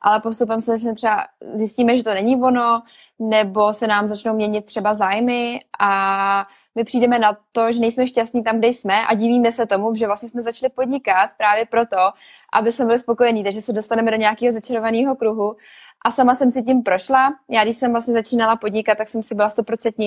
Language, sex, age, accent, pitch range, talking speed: Czech, female, 20-39, native, 210-240 Hz, 195 wpm